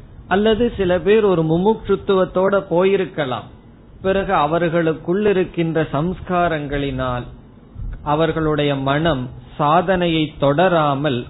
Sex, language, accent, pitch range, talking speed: male, Tamil, native, 130-180 Hz, 70 wpm